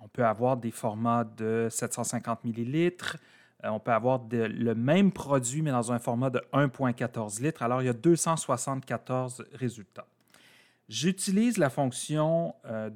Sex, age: male, 30-49